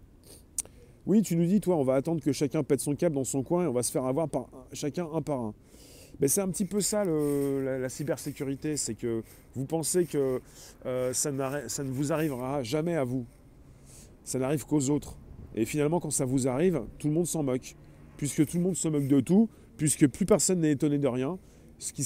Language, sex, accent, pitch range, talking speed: French, male, French, 120-165 Hz, 235 wpm